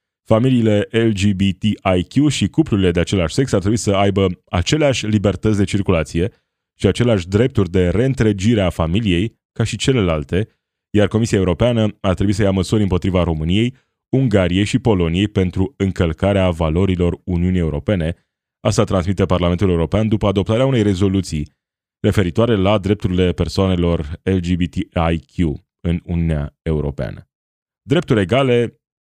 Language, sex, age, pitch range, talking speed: Romanian, male, 20-39, 90-110 Hz, 125 wpm